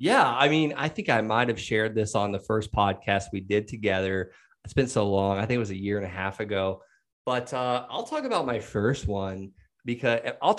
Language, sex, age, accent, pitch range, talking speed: English, male, 20-39, American, 105-125 Hz, 225 wpm